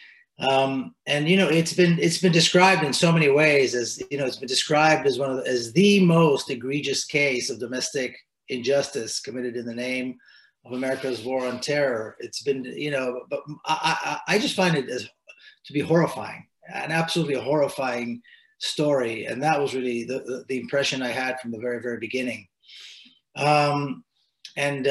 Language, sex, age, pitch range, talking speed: English, male, 30-49, 125-150 Hz, 185 wpm